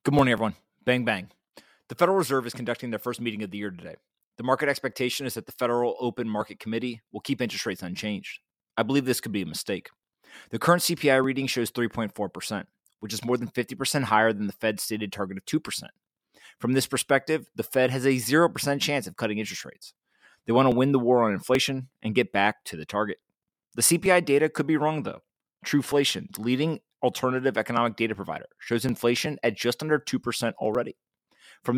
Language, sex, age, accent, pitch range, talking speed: English, male, 30-49, American, 115-140 Hz, 200 wpm